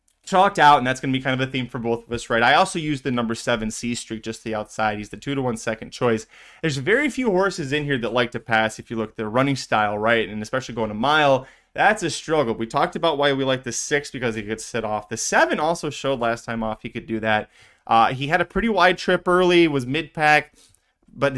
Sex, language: male, English